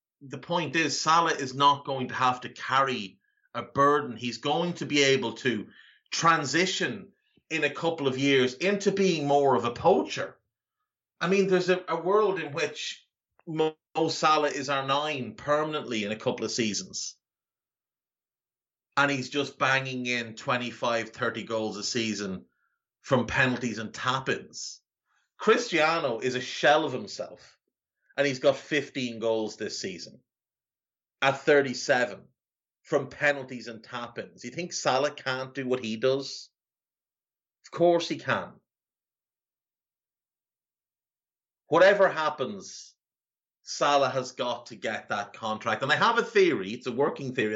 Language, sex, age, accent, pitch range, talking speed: English, male, 30-49, Irish, 125-165 Hz, 145 wpm